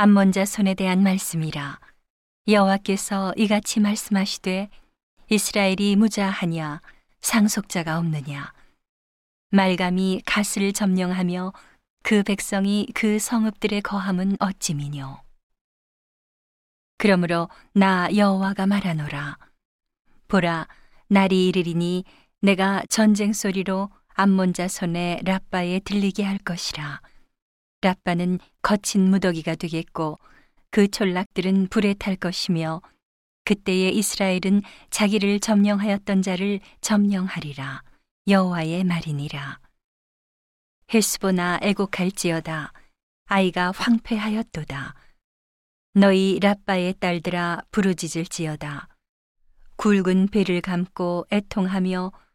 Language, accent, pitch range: Korean, native, 175-200 Hz